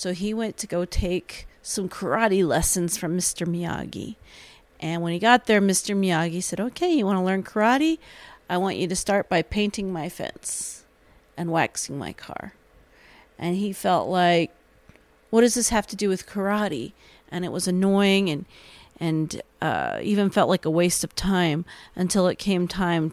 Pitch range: 170-205 Hz